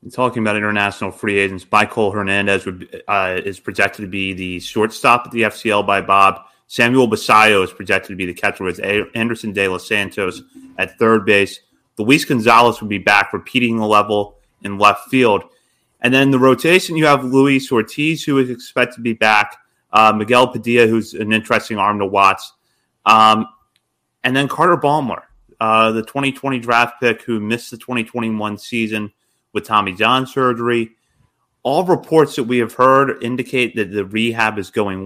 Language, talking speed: English, 175 wpm